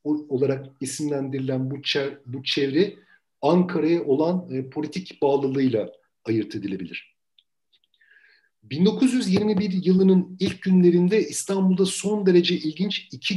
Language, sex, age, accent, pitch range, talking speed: Turkish, male, 50-69, native, 140-190 Hz, 100 wpm